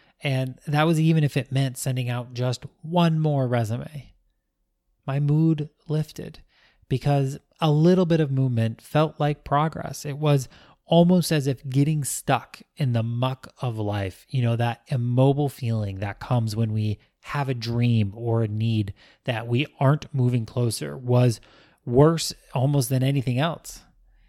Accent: American